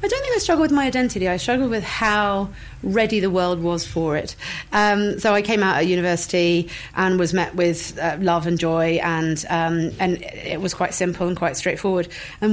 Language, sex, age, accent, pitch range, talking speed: English, female, 30-49, British, 180-215 Hz, 210 wpm